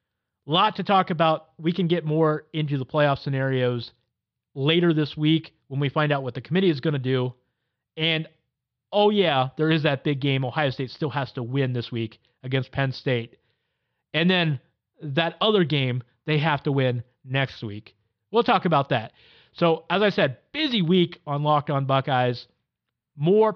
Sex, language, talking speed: male, English, 180 wpm